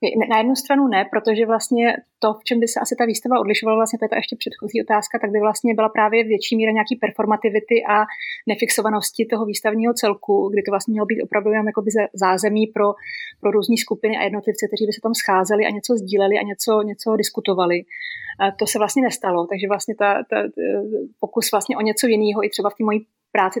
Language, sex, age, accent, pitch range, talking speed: Czech, female, 30-49, native, 205-225 Hz, 210 wpm